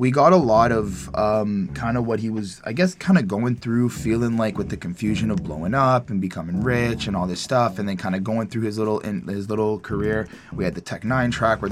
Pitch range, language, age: 110-145 Hz, English, 20-39